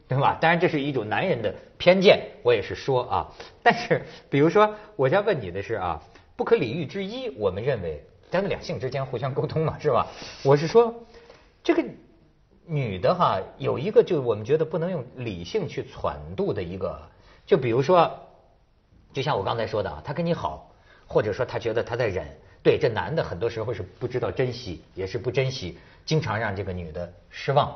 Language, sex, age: Chinese, male, 50-69